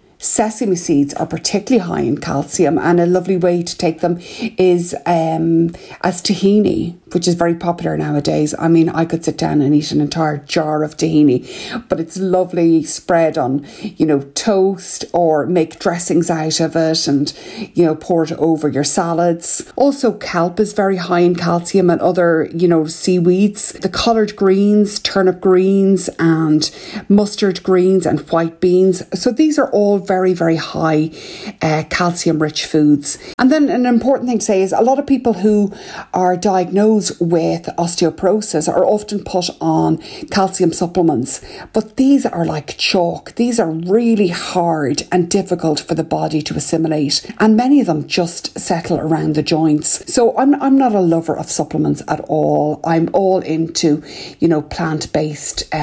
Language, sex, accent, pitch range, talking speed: English, female, Irish, 160-195 Hz, 170 wpm